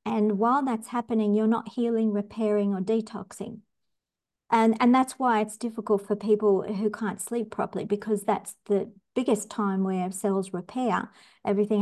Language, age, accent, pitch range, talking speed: English, 50-69, Australian, 200-225 Hz, 155 wpm